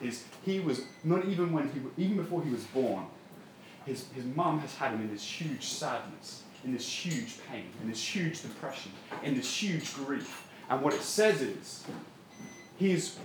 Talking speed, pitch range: 180 wpm, 140-190 Hz